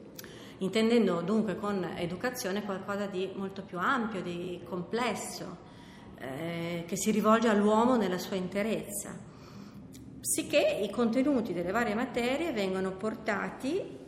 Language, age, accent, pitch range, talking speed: Italian, 40-59, native, 185-225 Hz, 115 wpm